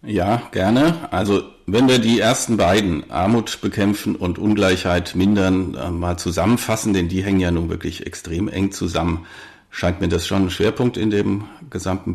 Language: German